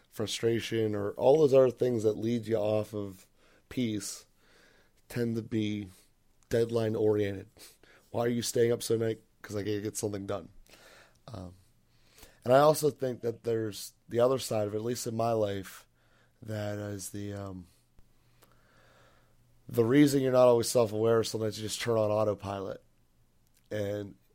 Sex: male